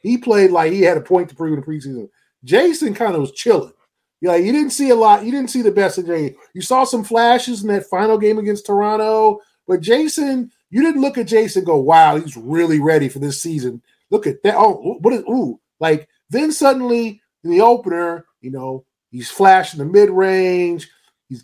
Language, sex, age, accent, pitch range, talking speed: English, male, 20-39, American, 150-200 Hz, 220 wpm